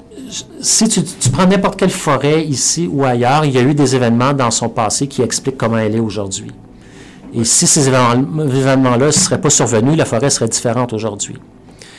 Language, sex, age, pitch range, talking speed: French, male, 50-69, 115-135 Hz, 190 wpm